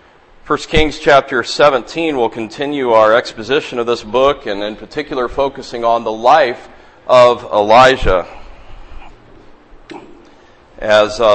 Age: 40-59